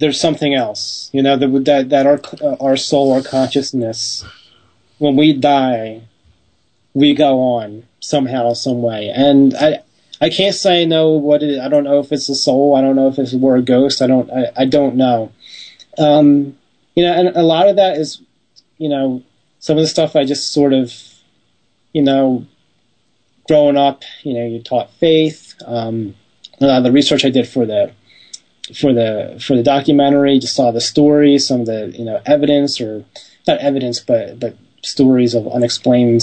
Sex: male